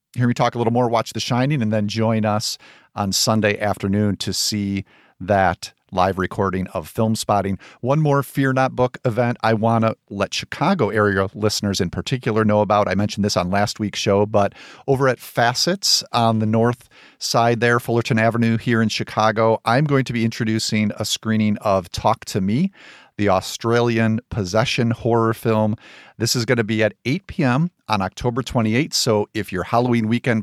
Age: 50-69